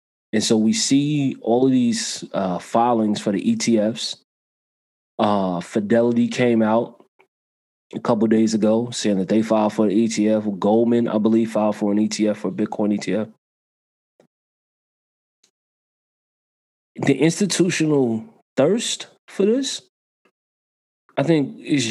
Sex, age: male, 20-39